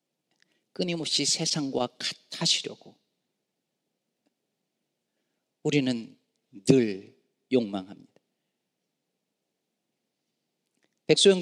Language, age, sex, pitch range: Korean, 40-59, male, 125-170 Hz